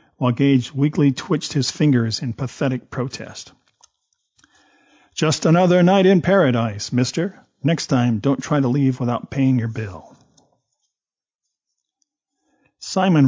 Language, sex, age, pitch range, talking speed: English, male, 50-69, 120-145 Hz, 115 wpm